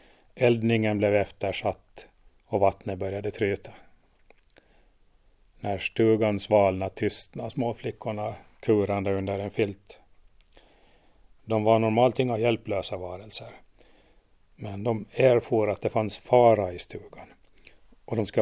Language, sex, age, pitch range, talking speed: Swedish, male, 30-49, 100-110 Hz, 115 wpm